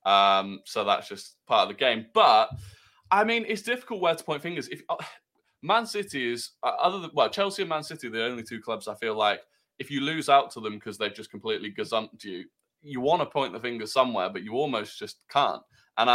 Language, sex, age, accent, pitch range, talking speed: English, male, 20-39, British, 110-140 Hz, 230 wpm